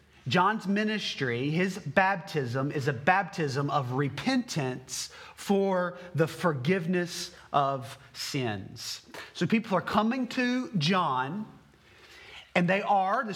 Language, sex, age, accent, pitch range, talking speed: English, male, 30-49, American, 165-245 Hz, 110 wpm